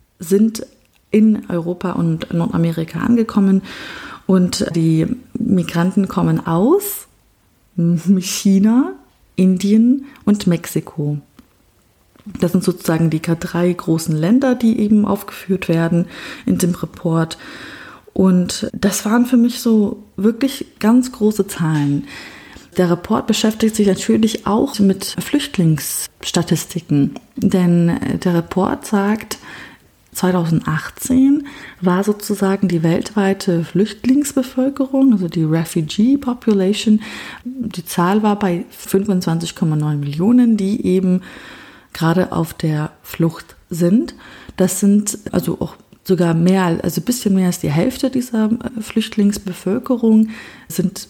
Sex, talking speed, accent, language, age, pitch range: female, 105 wpm, German, German, 30-49, 175-225 Hz